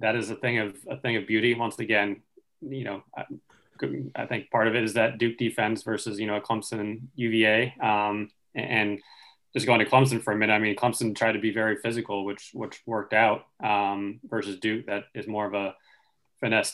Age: 20-39